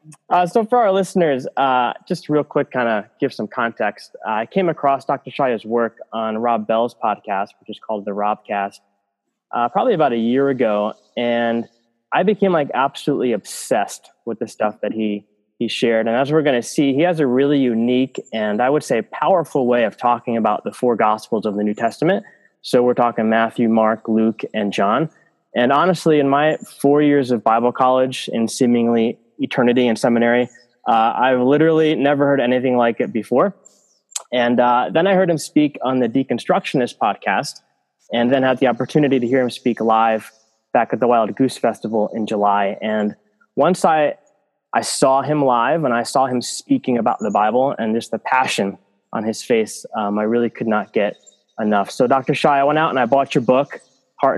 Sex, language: male, English